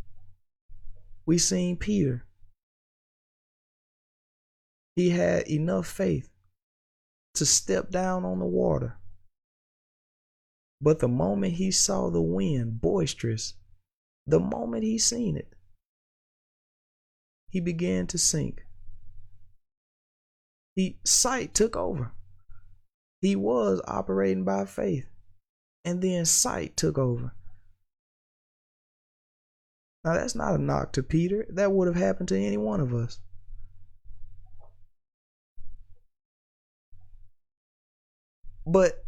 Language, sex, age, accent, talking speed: English, male, 20-39, American, 95 wpm